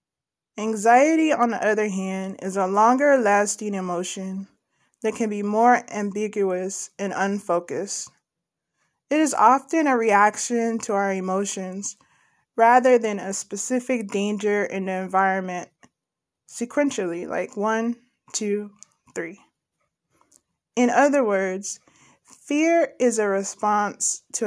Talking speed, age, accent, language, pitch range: 115 wpm, 20-39, American, English, 195-240 Hz